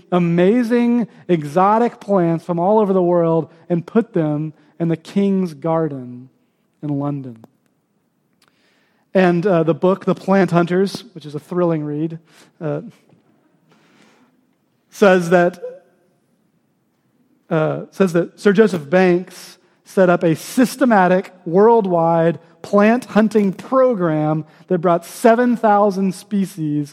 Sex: male